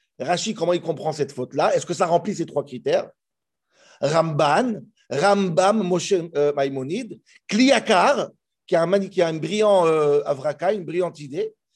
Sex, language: male, French